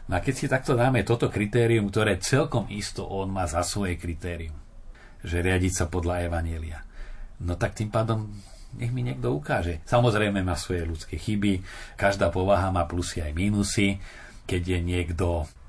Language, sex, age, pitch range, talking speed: Slovak, male, 40-59, 90-115 Hz, 165 wpm